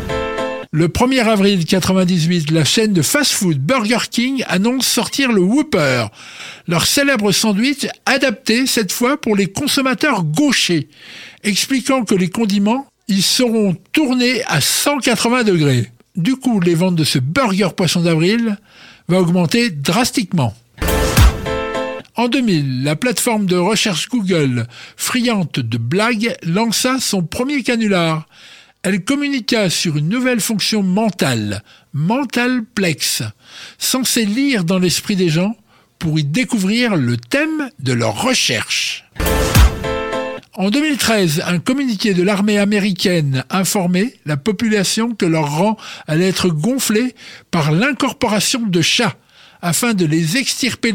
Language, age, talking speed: English, 60-79, 125 wpm